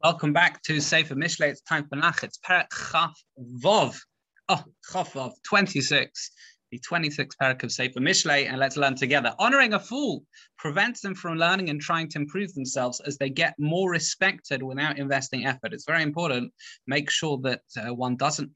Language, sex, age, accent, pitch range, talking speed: English, male, 20-39, British, 130-170 Hz, 175 wpm